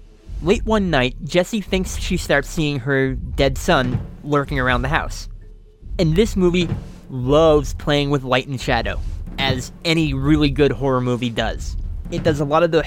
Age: 20-39